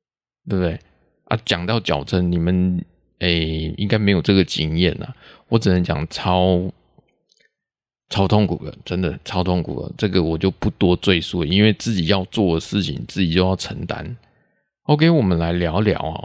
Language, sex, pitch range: Chinese, male, 90-135 Hz